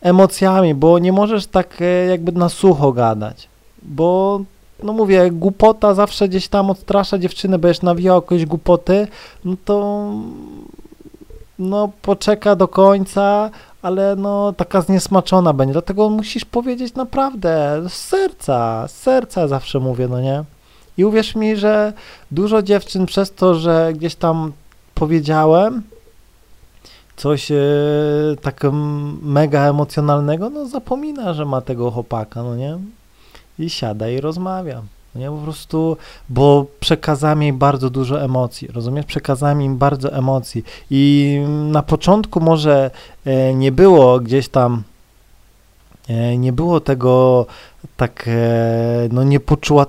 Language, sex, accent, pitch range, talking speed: Polish, male, native, 135-195 Hz, 130 wpm